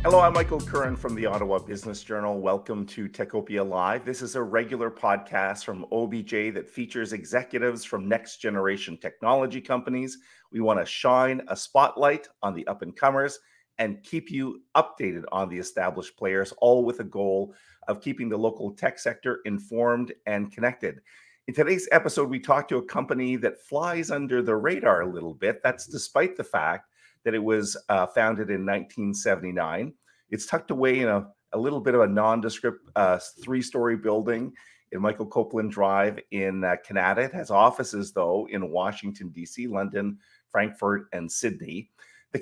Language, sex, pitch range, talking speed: English, male, 100-130 Hz, 165 wpm